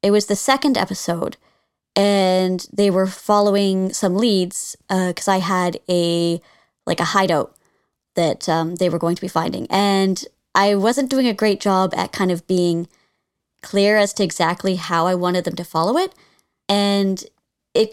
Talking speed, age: 170 wpm, 20-39